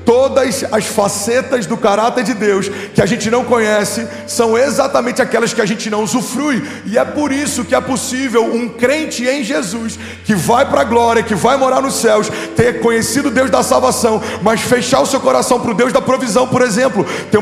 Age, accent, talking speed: 40-59, Brazilian, 205 wpm